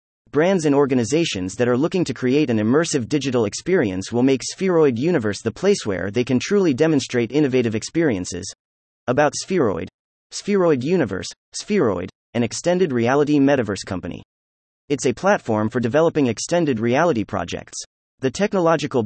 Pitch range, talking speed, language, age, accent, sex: 110-160 Hz, 140 wpm, English, 30-49, American, male